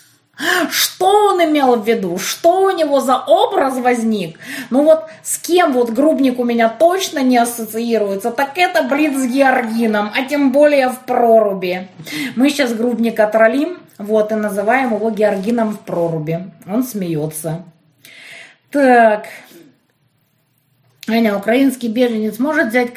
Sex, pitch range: female, 190-270 Hz